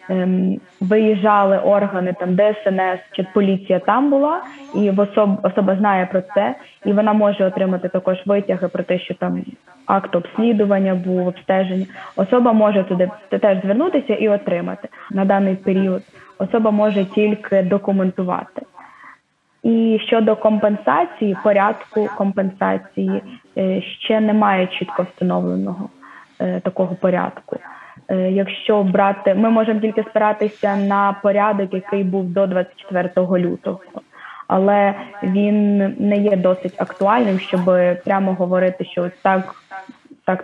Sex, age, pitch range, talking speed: female, 20-39, 185-210 Hz, 115 wpm